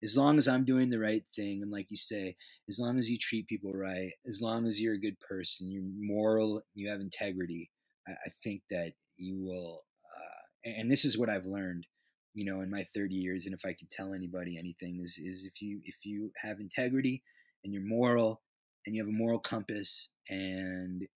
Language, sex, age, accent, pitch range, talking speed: English, male, 20-39, American, 95-120 Hz, 215 wpm